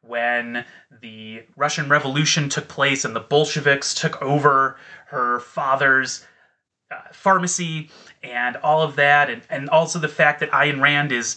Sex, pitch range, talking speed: male, 130-160 Hz, 150 wpm